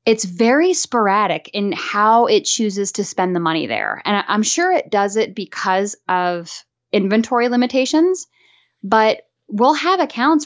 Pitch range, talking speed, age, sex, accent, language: 185-235 Hz, 150 wpm, 10-29, female, American, English